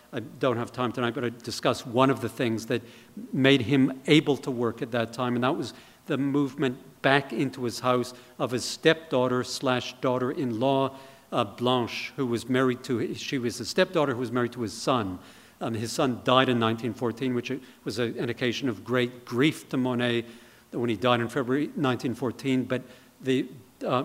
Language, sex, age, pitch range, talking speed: English, male, 50-69, 120-135 Hz, 175 wpm